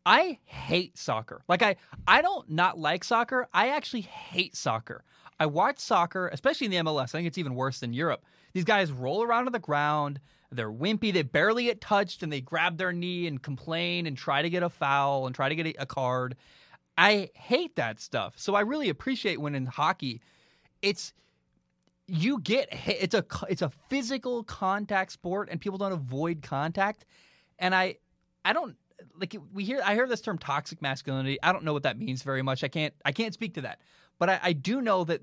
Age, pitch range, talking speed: 20-39, 145-200 Hz, 205 wpm